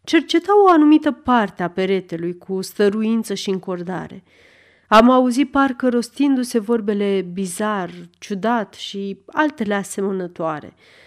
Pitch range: 185-275 Hz